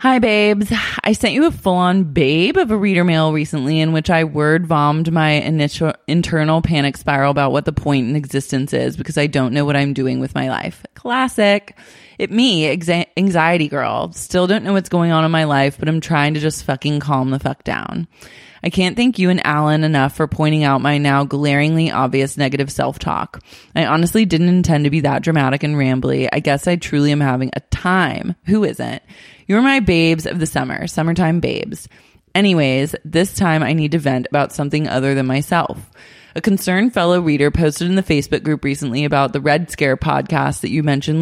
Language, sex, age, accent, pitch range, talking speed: English, female, 20-39, American, 140-170 Hz, 200 wpm